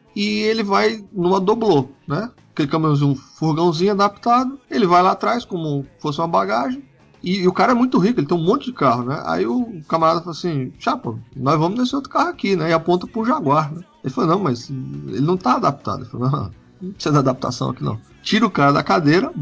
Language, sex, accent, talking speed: Portuguese, male, Brazilian, 220 wpm